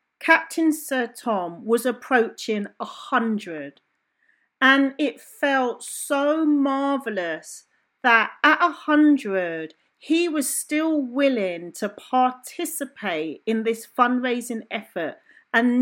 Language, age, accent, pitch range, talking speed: English, 40-59, British, 205-295 Hz, 95 wpm